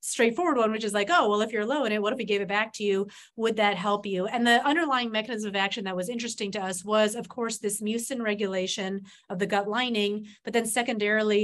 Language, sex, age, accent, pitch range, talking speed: English, female, 30-49, American, 200-230 Hz, 250 wpm